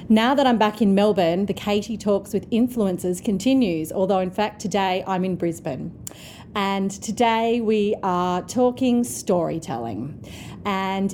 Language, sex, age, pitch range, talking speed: English, female, 30-49, 175-210 Hz, 140 wpm